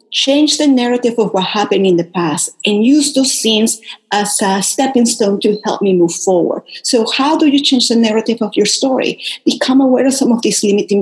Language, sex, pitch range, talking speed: English, female, 205-275 Hz, 210 wpm